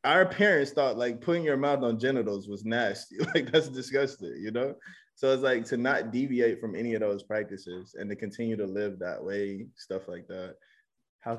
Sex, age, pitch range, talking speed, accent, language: male, 20-39, 100-115 Hz, 200 wpm, American, English